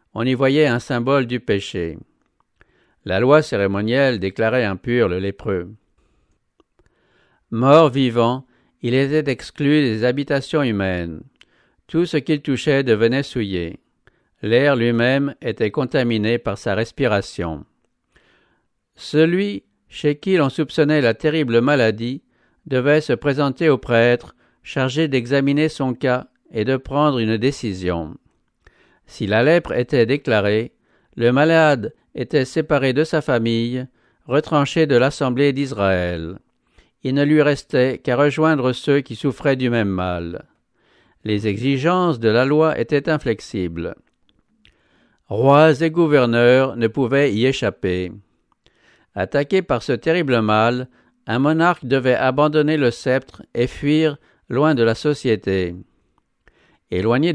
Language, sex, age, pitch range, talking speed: English, male, 60-79, 115-145 Hz, 120 wpm